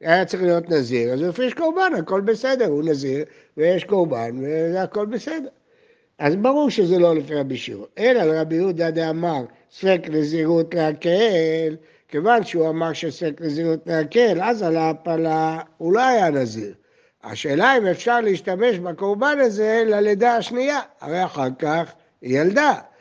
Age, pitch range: 60-79, 160-240 Hz